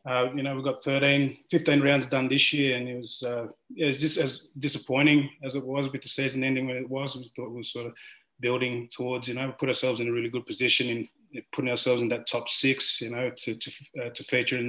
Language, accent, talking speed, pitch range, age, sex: English, Australian, 260 wpm, 120-135 Hz, 20-39, male